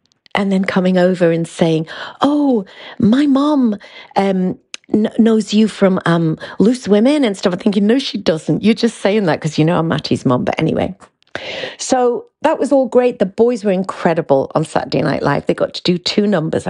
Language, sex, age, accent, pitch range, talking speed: English, female, 50-69, British, 165-220 Hz, 195 wpm